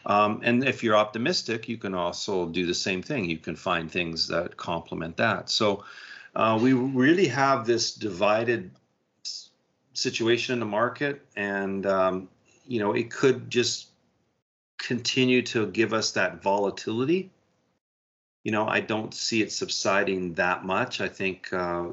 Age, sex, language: 40-59, male, English